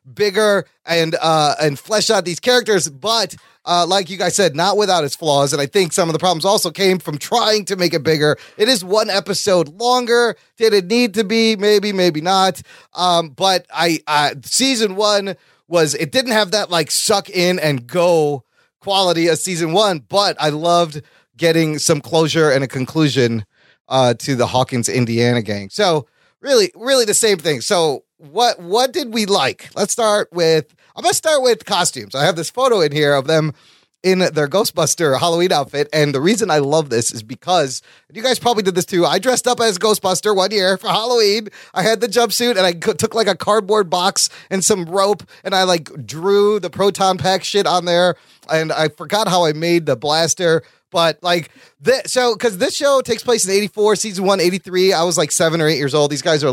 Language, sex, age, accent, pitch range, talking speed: English, male, 30-49, American, 155-210 Hz, 210 wpm